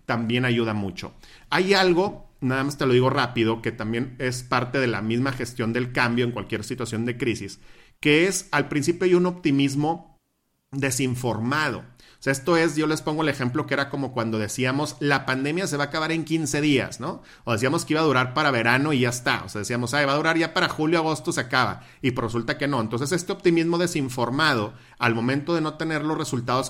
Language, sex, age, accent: English, male, 40-59, Mexican